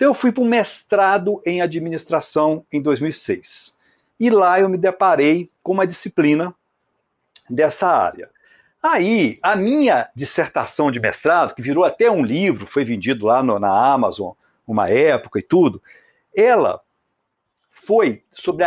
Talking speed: 140 wpm